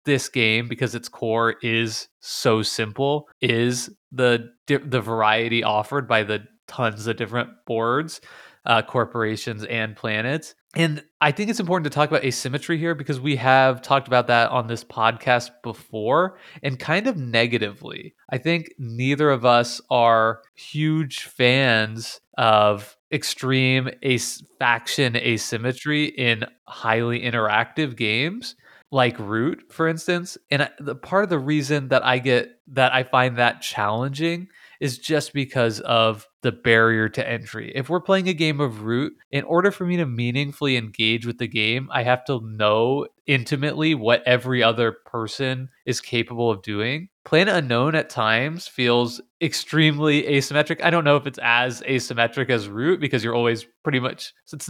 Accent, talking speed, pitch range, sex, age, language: American, 155 wpm, 115-150 Hz, male, 20-39, English